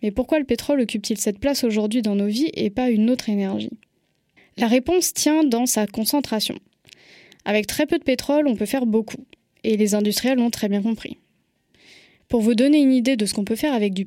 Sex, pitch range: female, 215-270 Hz